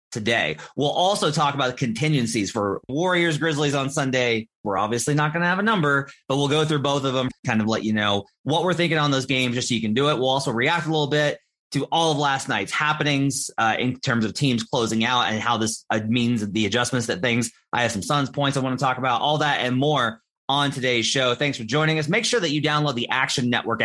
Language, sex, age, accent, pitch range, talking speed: English, male, 30-49, American, 110-145 Hz, 250 wpm